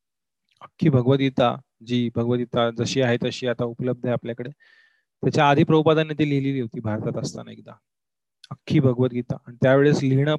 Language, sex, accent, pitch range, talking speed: Marathi, male, native, 120-145 Hz, 145 wpm